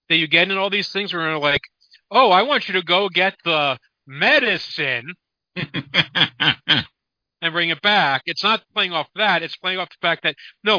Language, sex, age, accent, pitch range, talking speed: English, male, 50-69, American, 145-195 Hz, 200 wpm